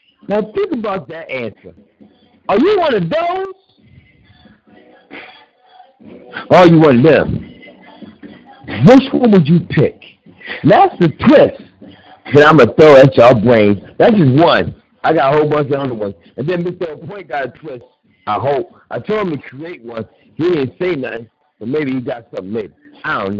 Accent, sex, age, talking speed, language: American, male, 60-79, 175 wpm, English